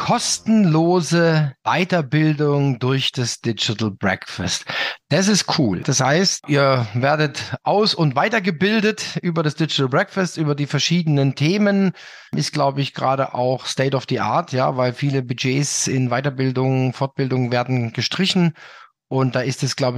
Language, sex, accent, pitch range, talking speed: German, male, German, 130-165 Hz, 140 wpm